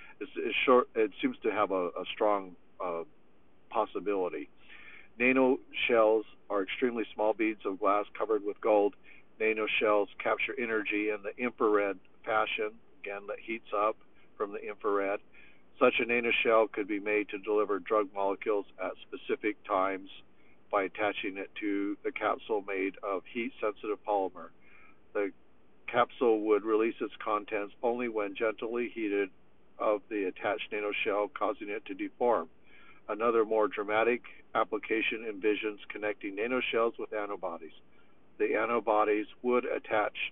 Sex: male